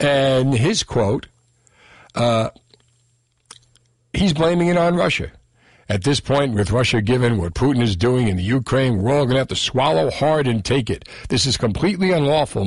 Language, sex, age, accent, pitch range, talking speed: English, male, 60-79, American, 120-170 Hz, 175 wpm